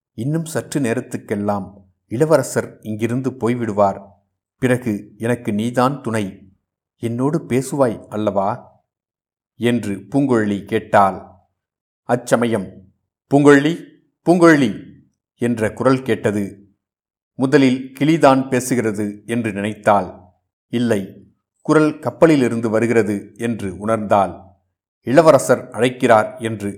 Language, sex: Tamil, male